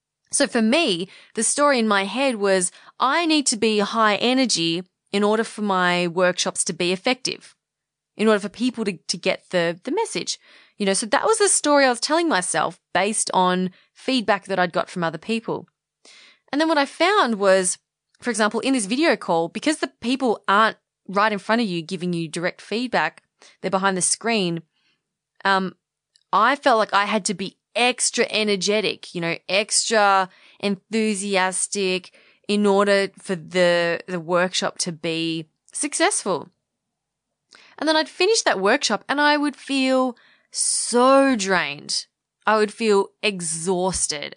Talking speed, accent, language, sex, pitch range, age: 165 wpm, Australian, English, female, 180-235 Hz, 20-39